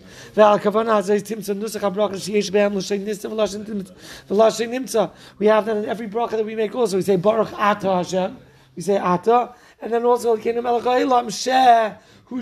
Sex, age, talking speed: male, 40-59, 95 wpm